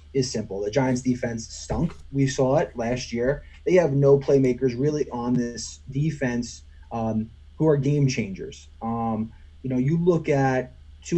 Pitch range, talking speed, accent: 110-135 Hz, 165 wpm, American